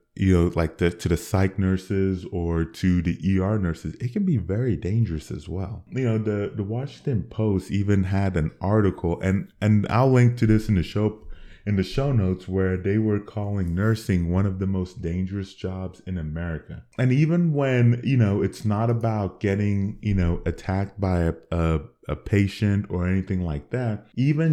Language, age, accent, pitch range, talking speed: English, 20-39, American, 85-105 Hz, 190 wpm